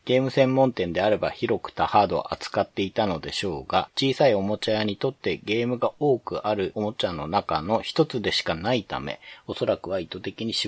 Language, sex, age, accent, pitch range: Japanese, male, 40-59, native, 95-120 Hz